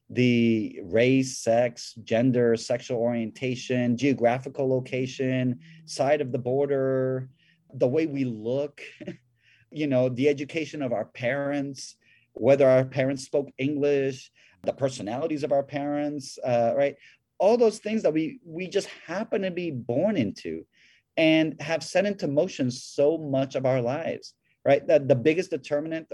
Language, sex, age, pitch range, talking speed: English, male, 30-49, 125-160 Hz, 140 wpm